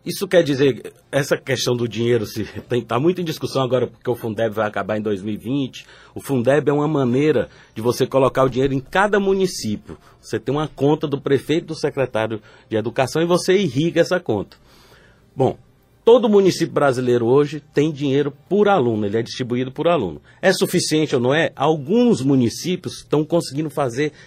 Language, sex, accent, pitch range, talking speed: Portuguese, male, Brazilian, 130-175 Hz, 175 wpm